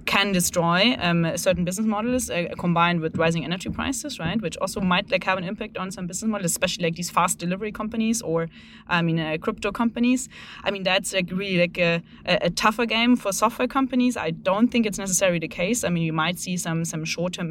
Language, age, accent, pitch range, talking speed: English, 20-39, German, 170-205 Hz, 220 wpm